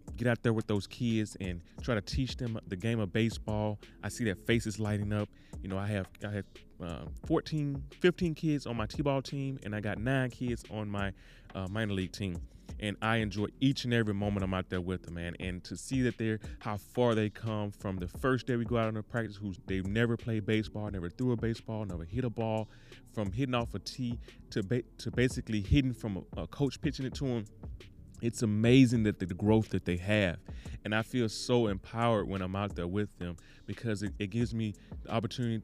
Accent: American